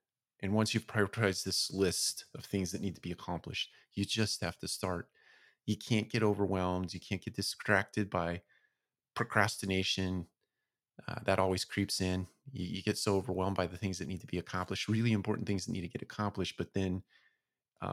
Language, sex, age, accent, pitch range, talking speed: English, male, 30-49, American, 90-105 Hz, 190 wpm